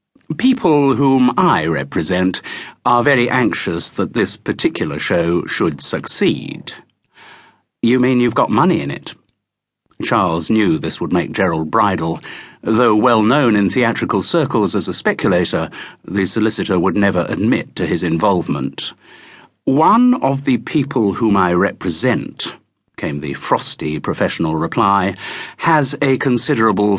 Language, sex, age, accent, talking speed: English, male, 50-69, British, 130 wpm